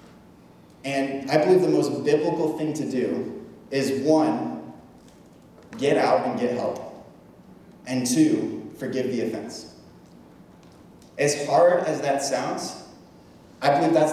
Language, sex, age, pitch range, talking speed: English, male, 20-39, 120-155 Hz, 125 wpm